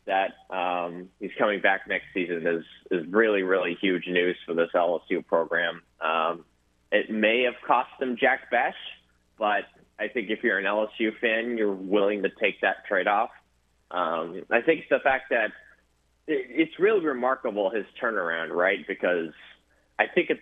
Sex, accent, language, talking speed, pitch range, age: male, American, English, 165 wpm, 85-120 Hz, 20-39